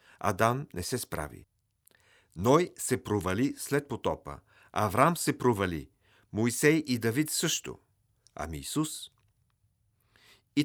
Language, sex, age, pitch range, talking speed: Bulgarian, male, 50-69, 95-125 Hz, 105 wpm